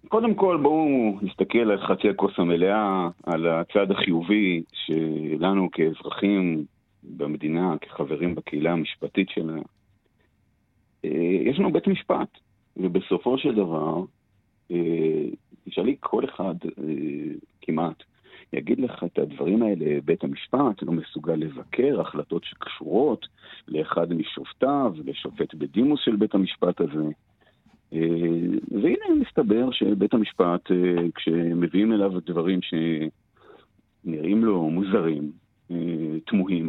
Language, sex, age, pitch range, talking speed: Hebrew, male, 50-69, 80-110 Hz, 105 wpm